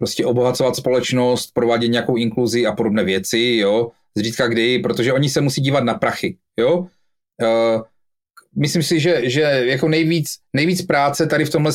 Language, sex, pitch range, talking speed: Czech, male, 115-150 Hz, 165 wpm